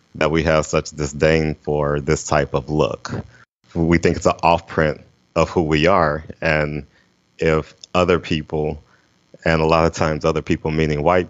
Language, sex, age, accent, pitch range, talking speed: English, male, 30-49, American, 75-90 Hz, 170 wpm